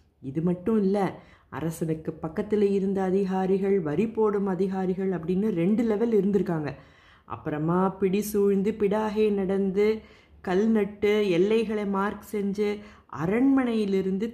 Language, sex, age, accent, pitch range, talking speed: Tamil, female, 20-39, native, 165-215 Hz, 105 wpm